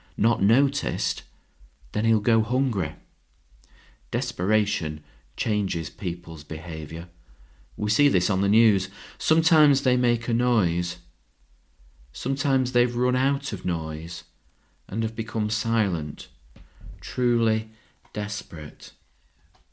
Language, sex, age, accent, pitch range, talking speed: English, male, 40-59, British, 85-120 Hz, 100 wpm